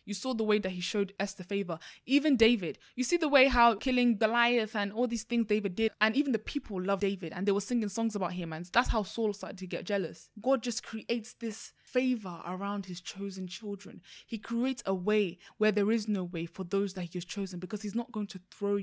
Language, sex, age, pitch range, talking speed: English, female, 20-39, 175-220 Hz, 240 wpm